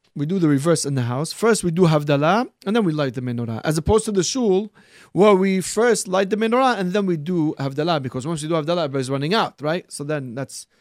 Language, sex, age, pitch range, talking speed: English, male, 30-49, 145-190 Hz, 255 wpm